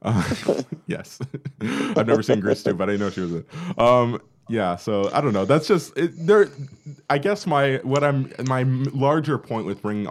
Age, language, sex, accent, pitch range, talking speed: 20-39, English, male, American, 100-140 Hz, 195 wpm